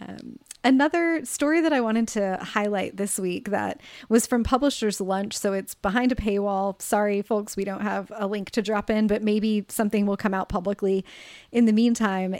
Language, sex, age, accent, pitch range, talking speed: English, female, 30-49, American, 185-220 Hz, 195 wpm